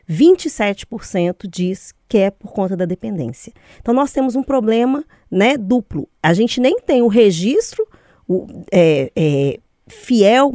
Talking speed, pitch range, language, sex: 120 wpm, 170-245 Hz, Portuguese, female